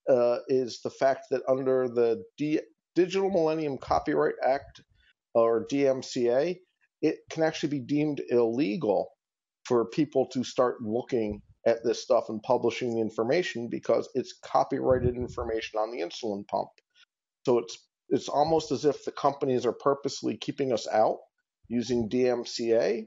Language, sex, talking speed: English, male, 145 wpm